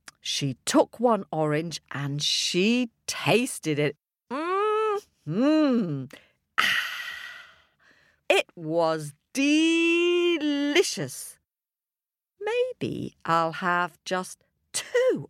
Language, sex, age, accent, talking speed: English, female, 50-69, British, 70 wpm